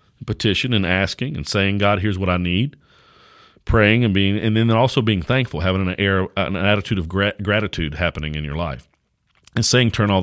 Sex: male